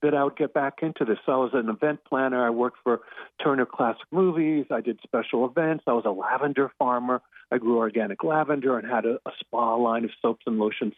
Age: 50-69